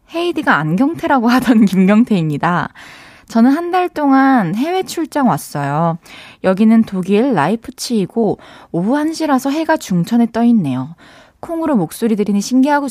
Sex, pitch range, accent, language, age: female, 180-265 Hz, native, Korean, 20-39